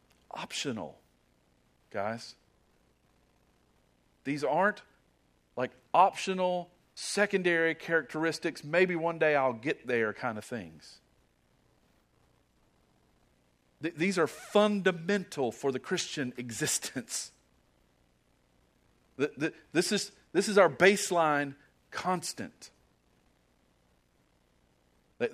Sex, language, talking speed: male, English, 75 wpm